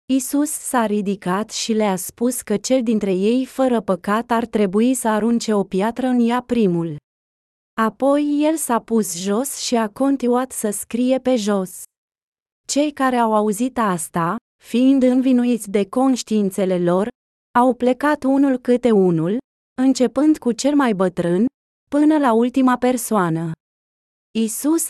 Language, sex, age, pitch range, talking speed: Romanian, female, 20-39, 205-260 Hz, 140 wpm